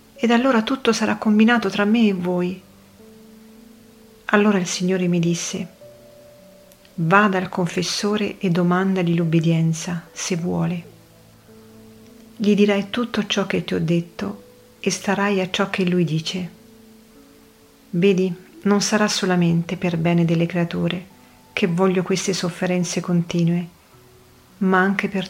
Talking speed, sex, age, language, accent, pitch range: 125 wpm, female, 40-59, Italian, native, 170-205 Hz